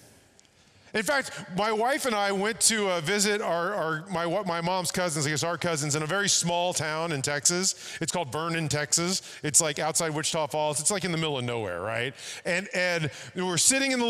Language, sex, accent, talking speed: English, male, American, 210 wpm